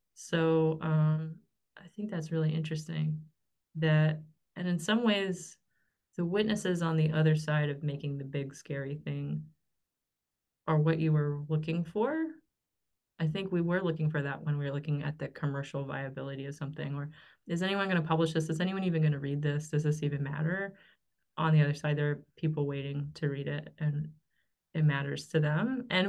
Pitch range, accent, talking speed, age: 150-190 Hz, American, 190 wpm, 20-39